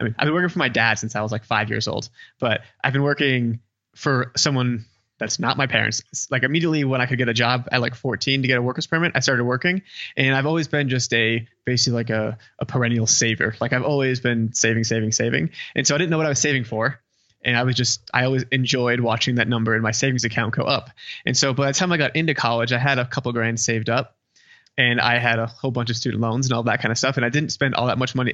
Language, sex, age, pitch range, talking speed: English, male, 20-39, 115-135 Hz, 275 wpm